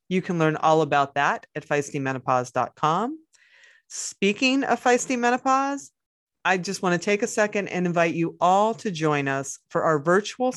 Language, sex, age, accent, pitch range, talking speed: English, female, 30-49, American, 150-210 Hz, 165 wpm